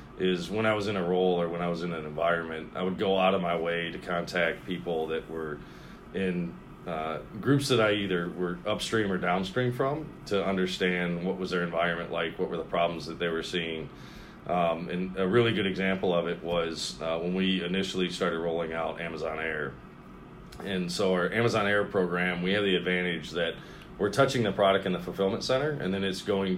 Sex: male